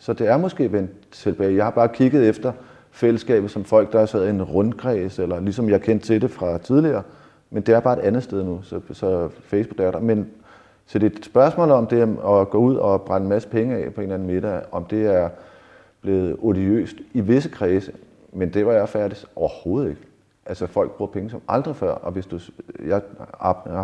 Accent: native